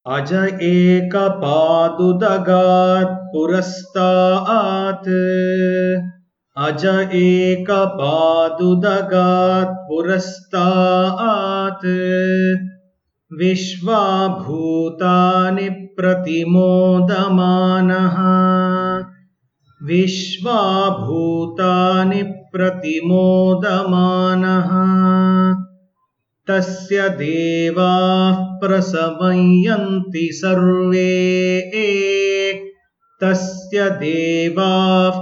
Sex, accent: male, native